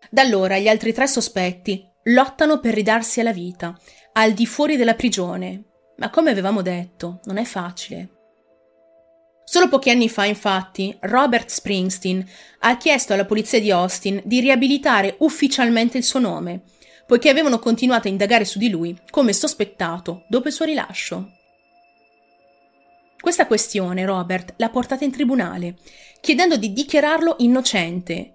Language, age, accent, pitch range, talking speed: Italian, 30-49, native, 185-270 Hz, 140 wpm